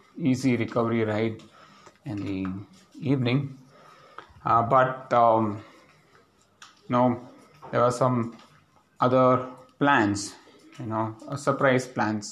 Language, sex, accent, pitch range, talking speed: English, male, Indian, 110-130 Hz, 100 wpm